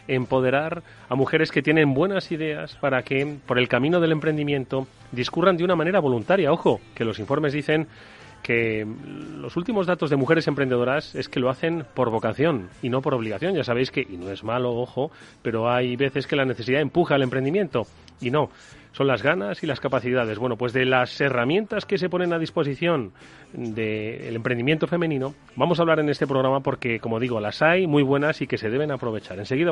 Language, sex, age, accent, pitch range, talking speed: Spanish, male, 30-49, Spanish, 115-145 Hz, 200 wpm